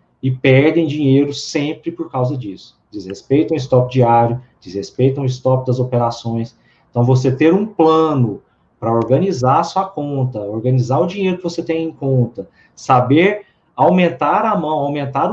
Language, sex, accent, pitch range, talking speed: Portuguese, male, Brazilian, 125-160 Hz, 155 wpm